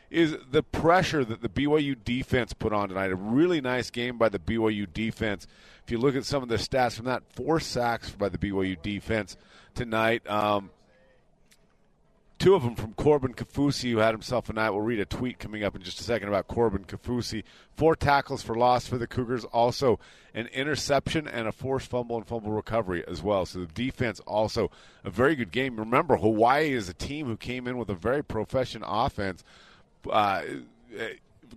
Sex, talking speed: male, 190 wpm